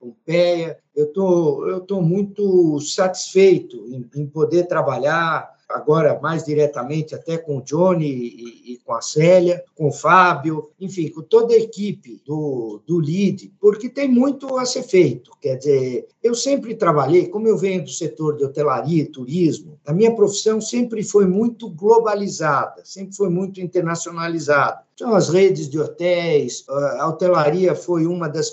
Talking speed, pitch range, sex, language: 160 wpm, 150-200 Hz, male, Portuguese